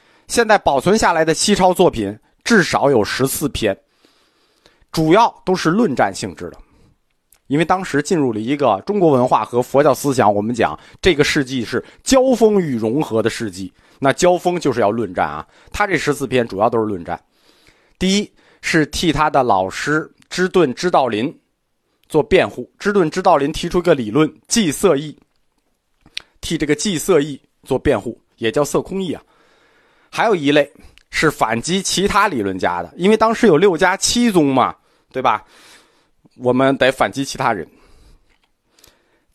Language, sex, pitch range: Chinese, male, 130-195 Hz